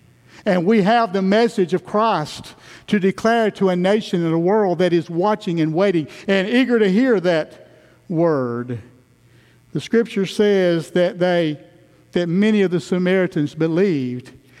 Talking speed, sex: 150 wpm, male